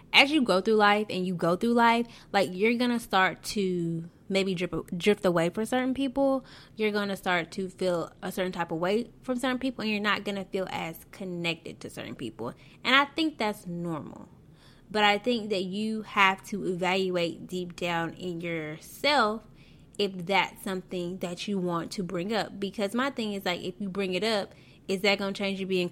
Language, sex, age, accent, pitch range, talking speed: English, female, 10-29, American, 180-235 Hz, 210 wpm